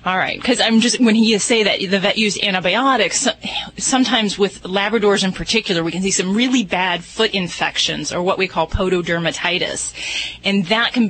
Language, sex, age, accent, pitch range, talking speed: English, female, 30-49, American, 180-220 Hz, 185 wpm